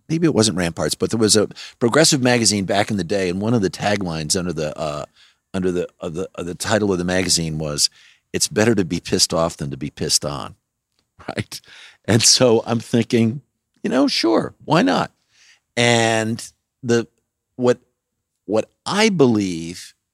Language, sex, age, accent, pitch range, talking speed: English, male, 50-69, American, 90-115 Hz, 180 wpm